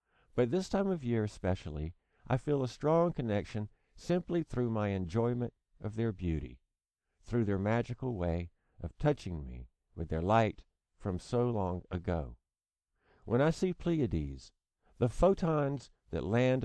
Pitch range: 85-130 Hz